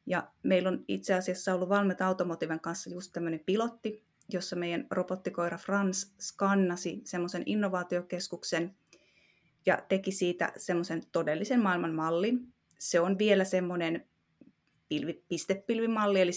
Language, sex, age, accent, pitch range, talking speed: Finnish, female, 30-49, native, 170-195 Hz, 120 wpm